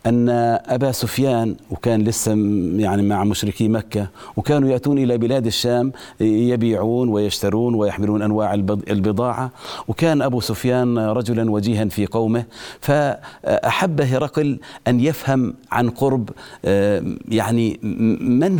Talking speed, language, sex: 110 wpm, Arabic, male